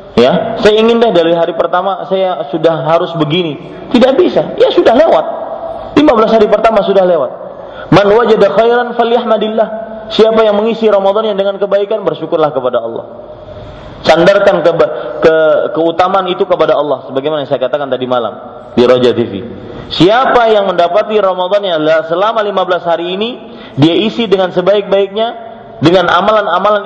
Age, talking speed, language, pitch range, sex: 30-49, 140 wpm, Malay, 160-225 Hz, male